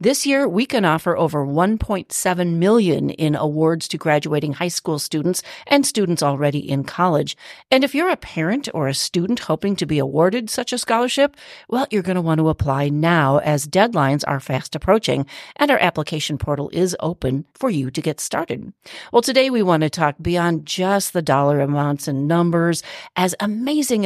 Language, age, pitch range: English, 40-59, 150-205 Hz